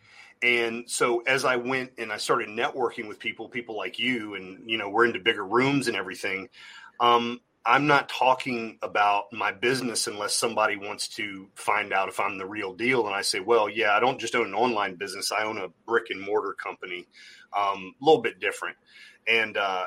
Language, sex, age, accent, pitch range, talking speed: English, male, 30-49, American, 105-130 Hz, 200 wpm